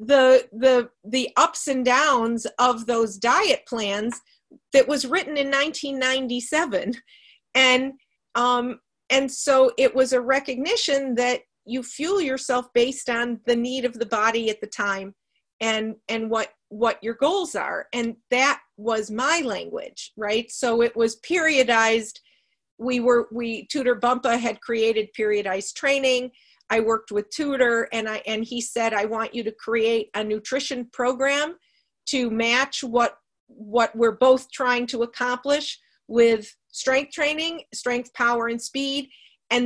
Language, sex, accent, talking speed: English, female, American, 150 wpm